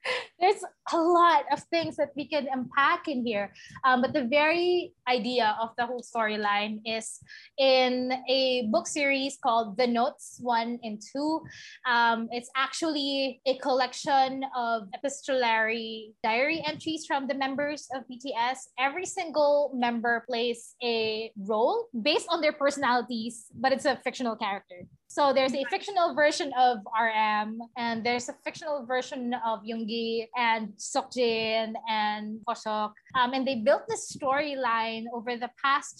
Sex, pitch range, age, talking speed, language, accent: female, 230-280 Hz, 20-39, 145 wpm, Filipino, native